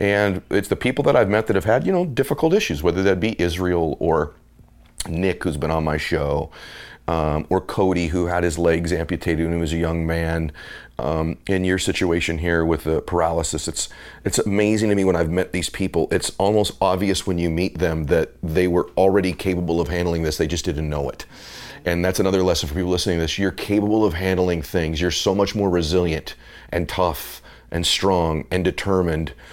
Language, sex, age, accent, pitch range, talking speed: English, male, 40-59, American, 80-95 Hz, 205 wpm